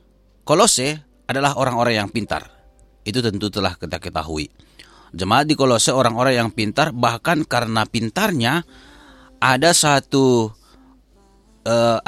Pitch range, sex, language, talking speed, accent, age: 110-150 Hz, male, Indonesian, 110 wpm, native, 30-49